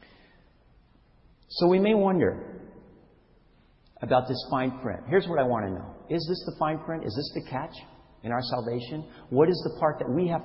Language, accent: English, American